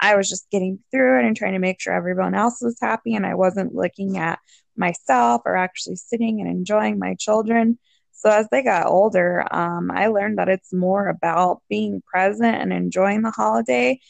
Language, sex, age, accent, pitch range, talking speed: English, female, 20-39, American, 180-215 Hz, 195 wpm